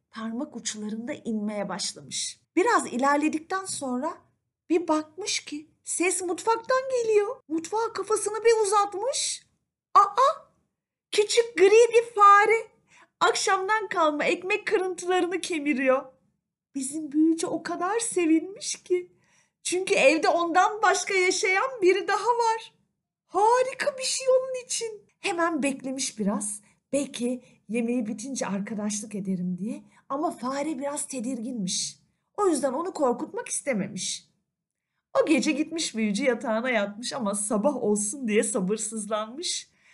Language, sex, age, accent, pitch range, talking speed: Turkish, female, 40-59, native, 230-385 Hz, 115 wpm